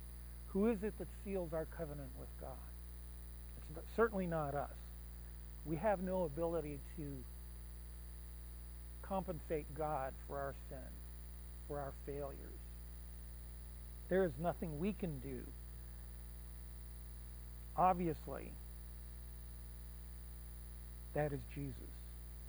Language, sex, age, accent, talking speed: English, male, 50-69, American, 95 wpm